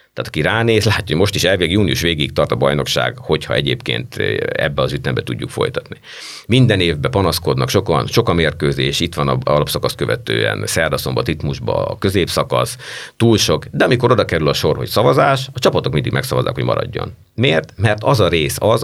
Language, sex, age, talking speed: Hungarian, male, 50-69, 180 wpm